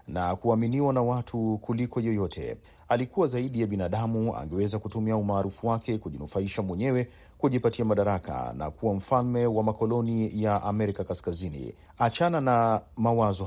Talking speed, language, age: 130 wpm, Swahili, 40-59